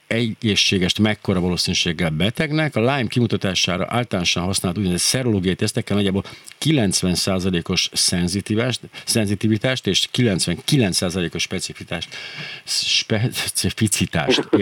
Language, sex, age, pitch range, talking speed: Hungarian, male, 50-69, 95-115 Hz, 80 wpm